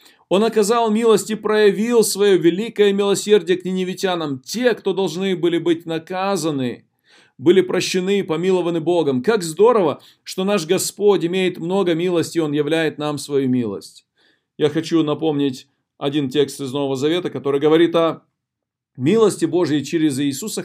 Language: Russian